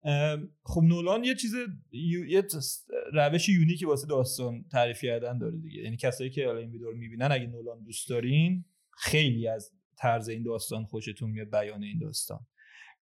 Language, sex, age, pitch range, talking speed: Persian, male, 30-49, 120-155 Hz, 155 wpm